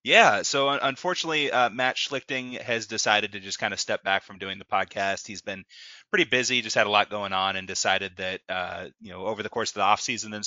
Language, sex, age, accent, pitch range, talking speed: English, male, 20-39, American, 100-120 Hz, 240 wpm